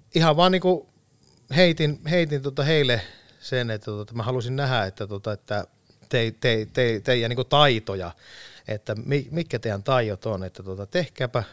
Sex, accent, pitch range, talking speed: male, native, 105-140 Hz, 135 wpm